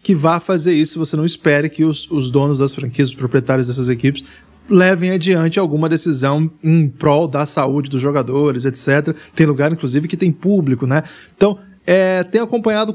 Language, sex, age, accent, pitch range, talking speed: Portuguese, male, 20-39, Brazilian, 145-185 Hz, 180 wpm